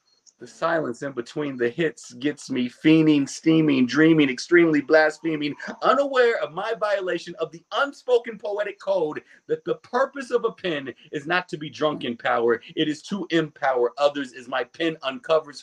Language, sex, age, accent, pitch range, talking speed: English, male, 40-59, American, 130-190 Hz, 170 wpm